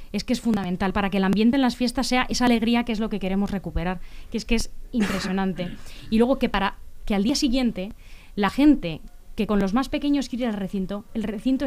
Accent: Spanish